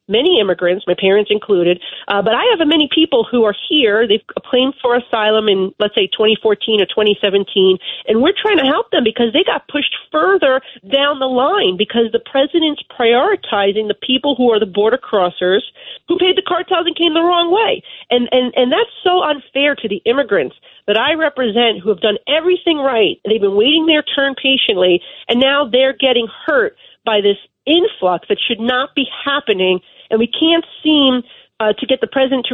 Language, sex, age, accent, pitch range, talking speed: English, female, 40-59, American, 215-300 Hz, 190 wpm